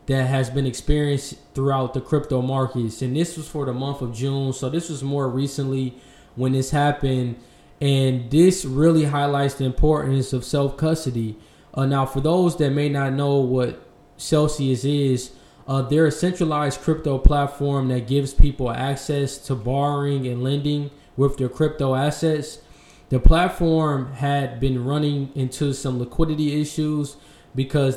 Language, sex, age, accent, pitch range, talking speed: English, male, 10-29, American, 130-150 Hz, 150 wpm